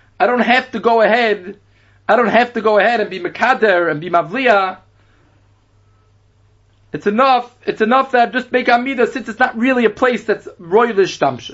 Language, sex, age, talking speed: English, male, 30-49, 180 wpm